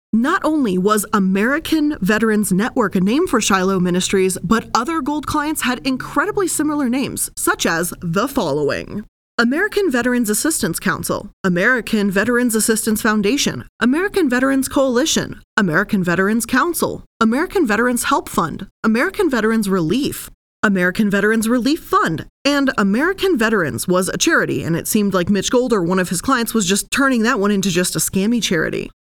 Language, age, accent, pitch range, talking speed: English, 20-39, American, 195-270 Hz, 155 wpm